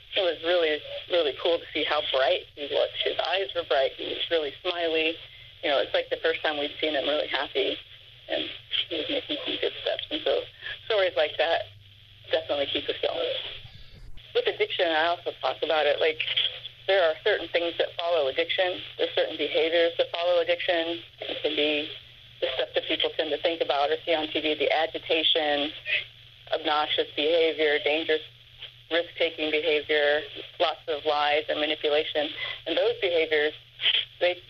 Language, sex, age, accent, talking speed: English, female, 30-49, American, 170 wpm